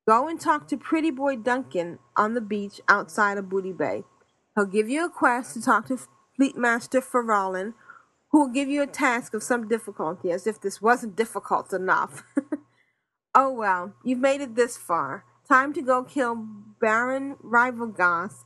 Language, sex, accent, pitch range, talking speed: English, female, American, 200-255 Hz, 170 wpm